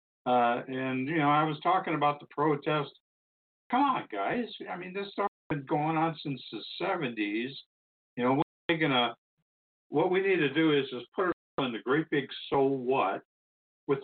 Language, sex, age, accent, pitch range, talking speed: English, male, 60-79, American, 115-150 Hz, 185 wpm